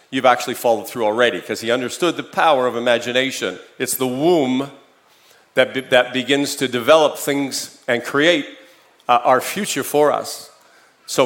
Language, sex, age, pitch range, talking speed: English, male, 50-69, 130-170 Hz, 160 wpm